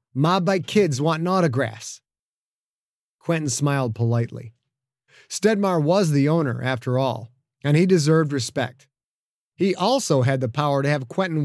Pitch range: 130-190 Hz